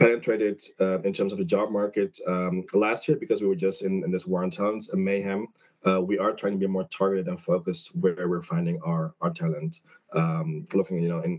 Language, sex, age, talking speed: English, male, 20-39, 230 wpm